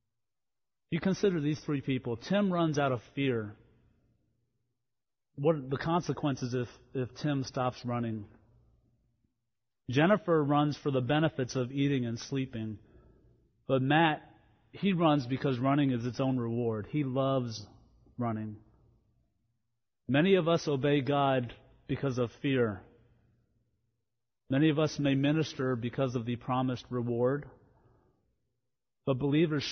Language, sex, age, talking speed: English, male, 40-59, 125 wpm